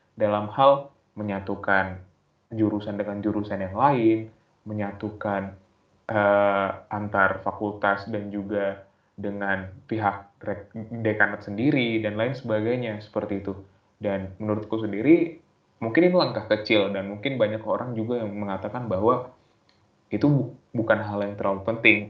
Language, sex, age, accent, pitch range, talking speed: Indonesian, male, 20-39, native, 100-115 Hz, 120 wpm